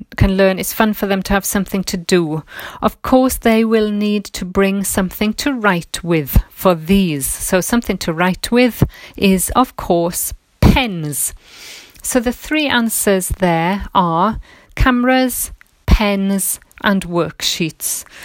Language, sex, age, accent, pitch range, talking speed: English, female, 40-59, British, 180-230 Hz, 140 wpm